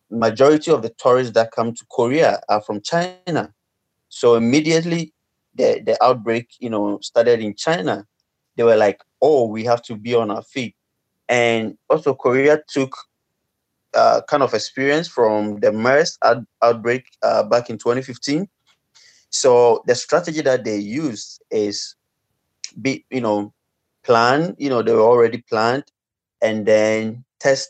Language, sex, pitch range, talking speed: English, male, 110-145 Hz, 155 wpm